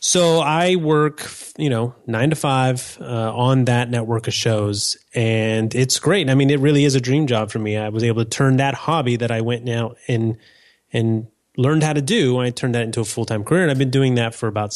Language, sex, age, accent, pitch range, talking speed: English, male, 30-49, American, 115-145 Hz, 240 wpm